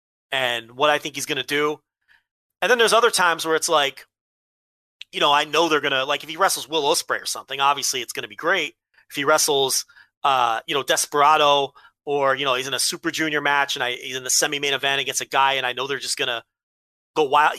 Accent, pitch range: American, 135-185 Hz